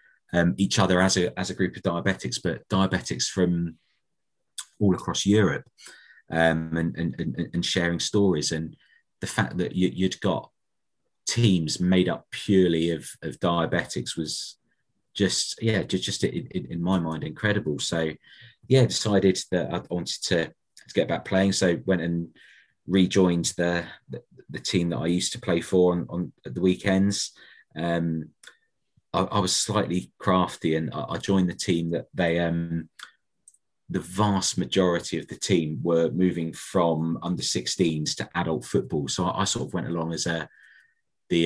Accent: British